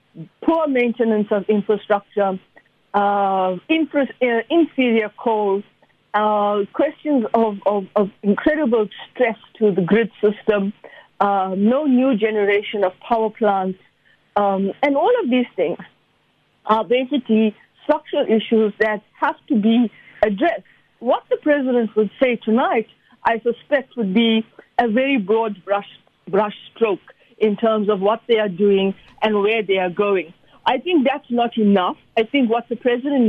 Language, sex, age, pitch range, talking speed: English, female, 50-69, 205-255 Hz, 145 wpm